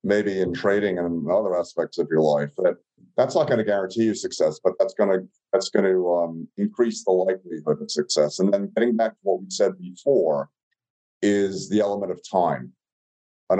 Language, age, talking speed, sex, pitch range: English, 50-69, 200 wpm, male, 85-110 Hz